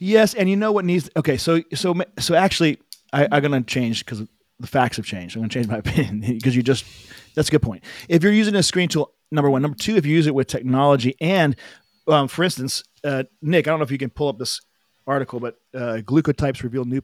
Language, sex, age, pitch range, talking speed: English, male, 40-59, 115-150 Hz, 255 wpm